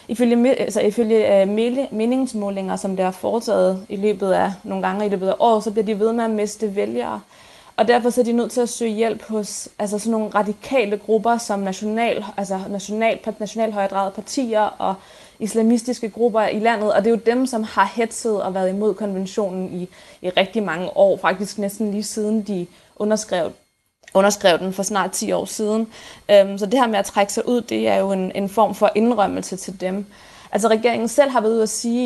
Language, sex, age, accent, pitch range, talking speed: Danish, female, 20-39, native, 200-230 Hz, 195 wpm